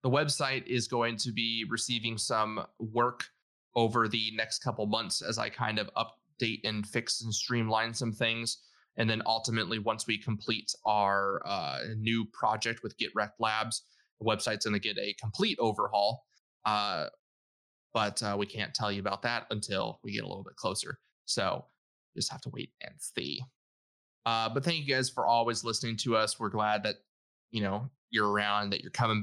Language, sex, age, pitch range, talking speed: English, male, 20-39, 105-120 Hz, 180 wpm